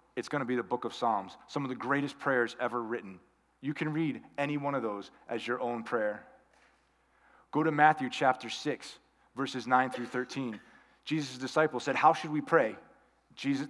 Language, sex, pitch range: English, male, 115-145 Hz